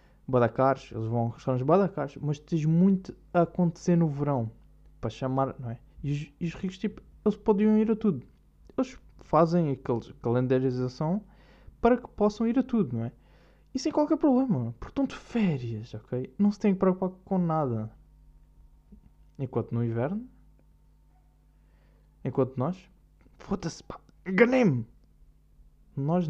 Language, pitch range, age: Portuguese, 120-170 Hz, 20-39